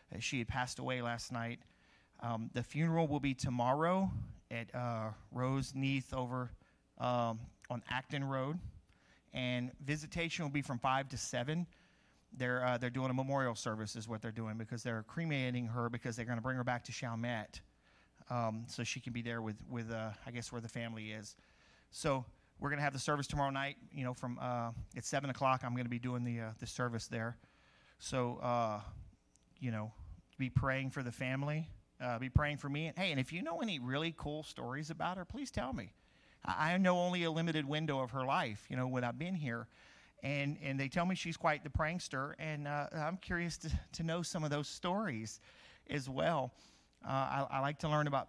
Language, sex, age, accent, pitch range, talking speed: English, male, 40-59, American, 120-145 Hz, 210 wpm